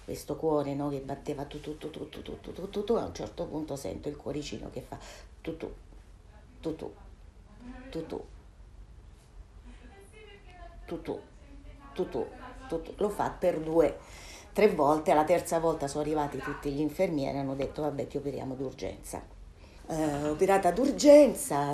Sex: female